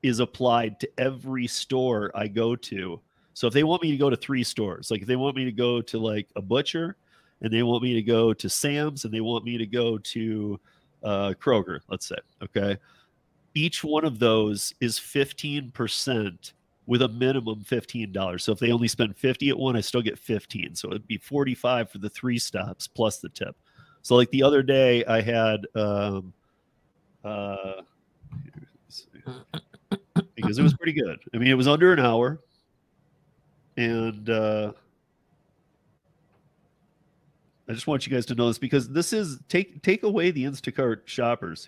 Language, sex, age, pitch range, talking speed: English, male, 40-59, 115-150 Hz, 175 wpm